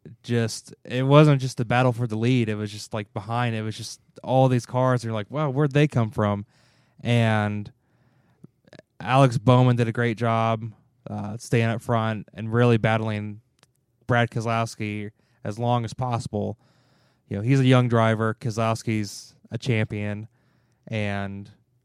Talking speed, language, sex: 155 wpm, English, male